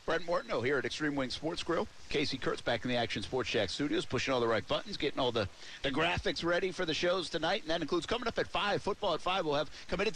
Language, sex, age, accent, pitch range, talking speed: English, male, 50-69, American, 110-150 Hz, 270 wpm